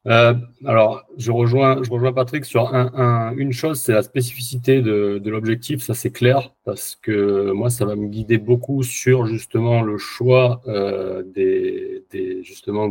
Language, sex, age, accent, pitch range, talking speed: French, male, 30-49, French, 100-125 Hz, 170 wpm